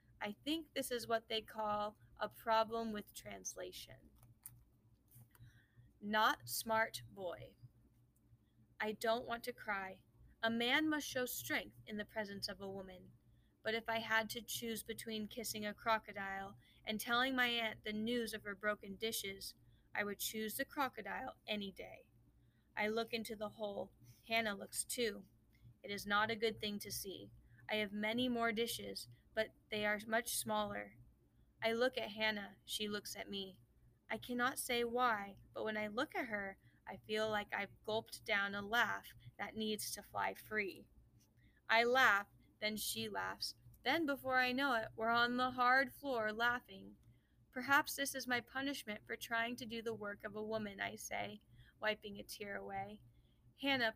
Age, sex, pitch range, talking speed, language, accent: 20-39, female, 195-235 Hz, 170 wpm, English, American